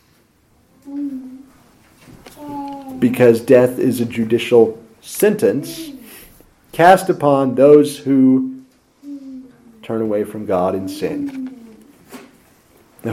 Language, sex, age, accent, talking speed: English, male, 40-59, American, 80 wpm